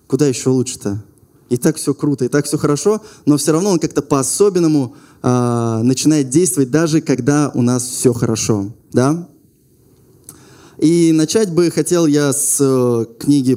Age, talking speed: 20-39, 155 wpm